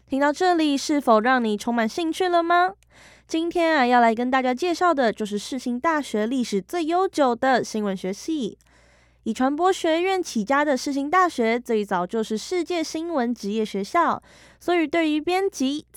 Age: 20-39